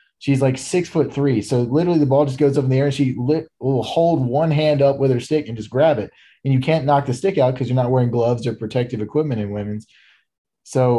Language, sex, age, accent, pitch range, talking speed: English, male, 20-39, American, 120-140 Hz, 255 wpm